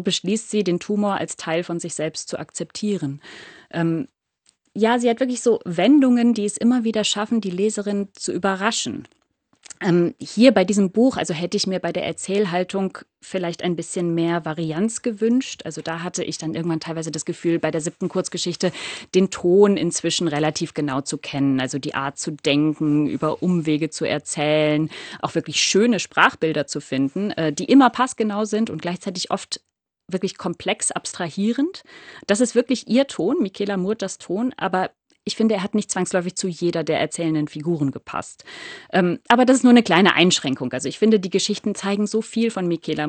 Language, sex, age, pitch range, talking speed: German, female, 30-49, 165-220 Hz, 180 wpm